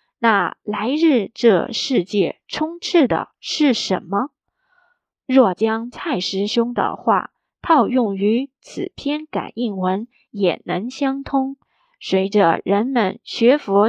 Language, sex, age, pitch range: Chinese, female, 20-39, 200-290 Hz